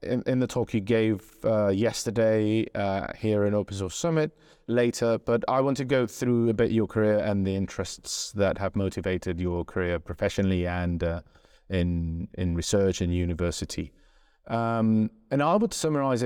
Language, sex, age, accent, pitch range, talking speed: English, male, 30-49, British, 100-125 Hz, 170 wpm